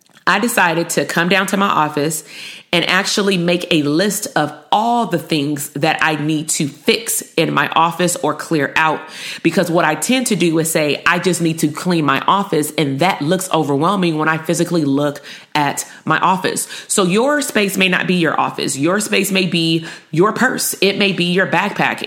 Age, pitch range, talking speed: 30-49, 155-190 Hz, 200 wpm